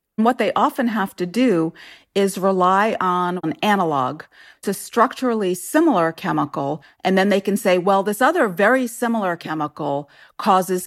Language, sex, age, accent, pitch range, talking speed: English, female, 40-59, American, 170-245 Hz, 150 wpm